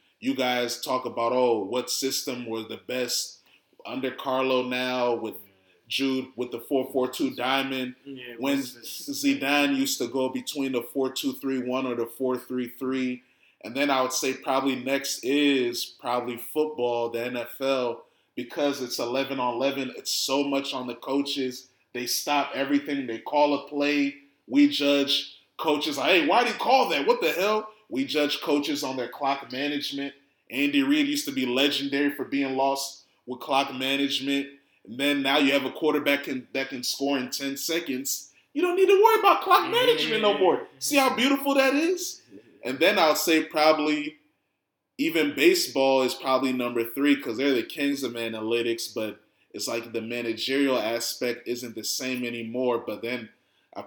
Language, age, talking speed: English, 30-49, 175 wpm